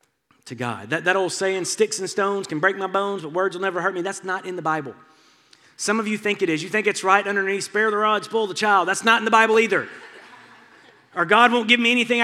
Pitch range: 165-220 Hz